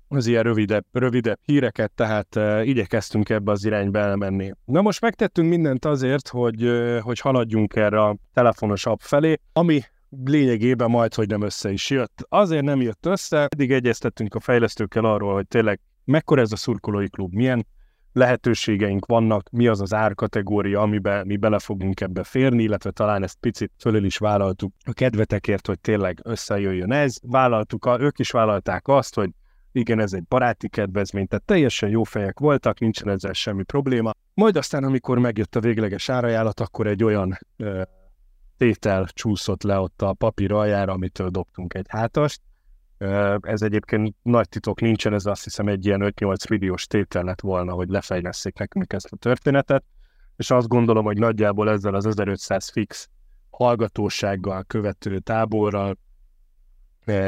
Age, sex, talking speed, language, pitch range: 30-49, male, 155 wpm, Hungarian, 100-120 Hz